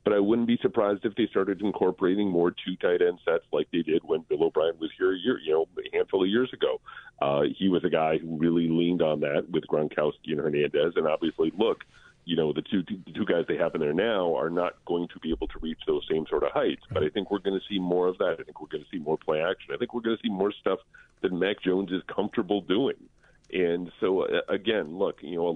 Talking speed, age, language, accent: 265 wpm, 40-59, English, American